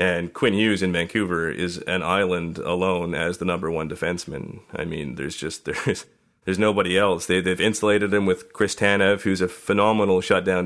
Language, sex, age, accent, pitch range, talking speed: English, male, 30-49, American, 90-100 Hz, 185 wpm